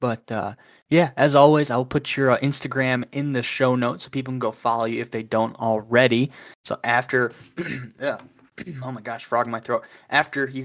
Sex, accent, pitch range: male, American, 115-130 Hz